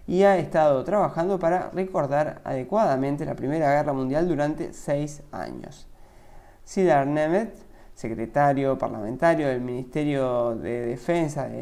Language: Spanish